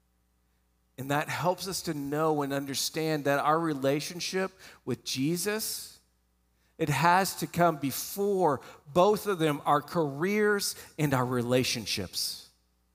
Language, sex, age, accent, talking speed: English, male, 50-69, American, 120 wpm